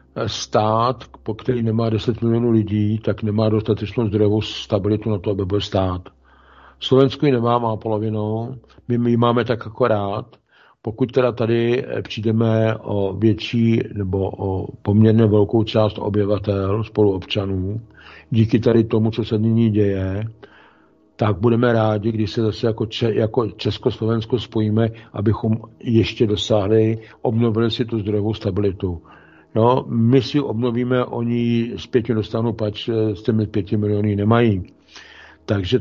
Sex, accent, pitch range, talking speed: male, native, 105-125 Hz, 130 wpm